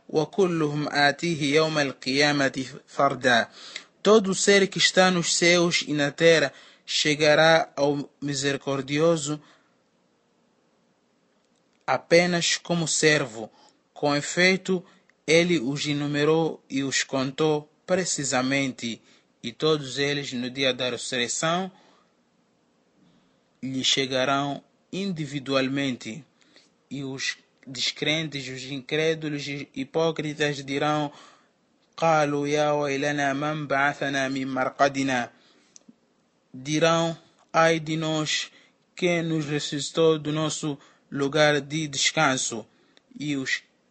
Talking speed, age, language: 80 wpm, 20-39, Portuguese